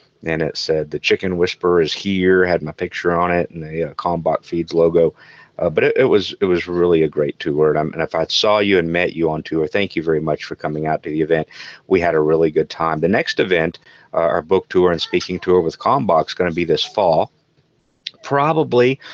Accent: American